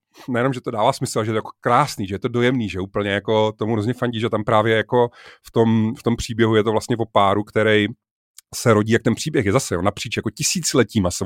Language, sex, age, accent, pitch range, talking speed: Czech, male, 30-49, native, 105-120 Hz, 245 wpm